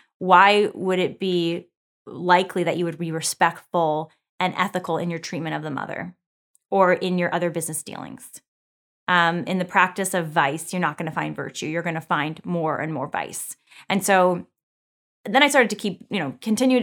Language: English